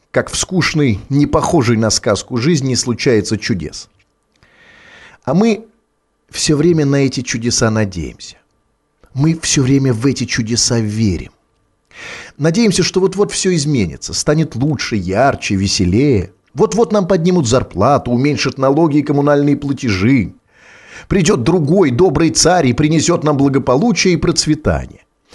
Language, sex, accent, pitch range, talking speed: Russian, male, native, 120-155 Hz, 125 wpm